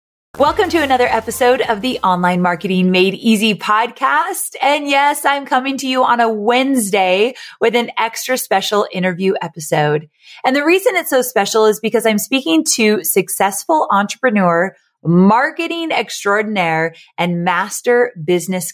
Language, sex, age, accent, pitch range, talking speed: English, female, 30-49, American, 175-240 Hz, 140 wpm